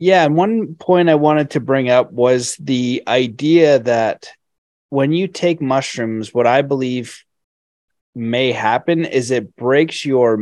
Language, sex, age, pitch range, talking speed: English, male, 30-49, 120-145 Hz, 150 wpm